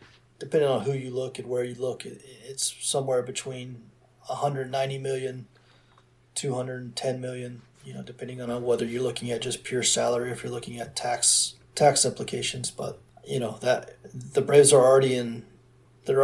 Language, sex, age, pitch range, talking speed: English, male, 30-49, 120-130 Hz, 165 wpm